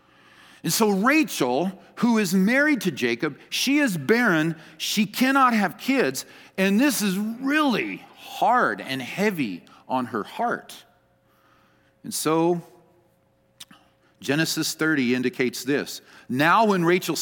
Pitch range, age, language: 135-200 Hz, 50-69, English